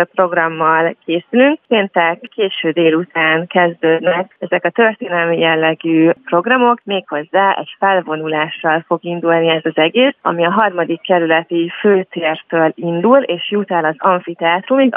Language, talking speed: Hungarian, 120 wpm